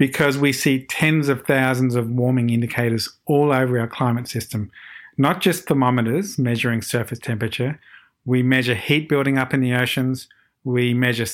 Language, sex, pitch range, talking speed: English, male, 120-140 Hz, 160 wpm